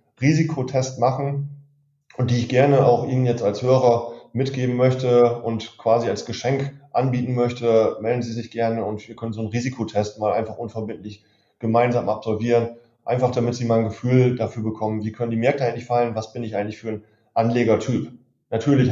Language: German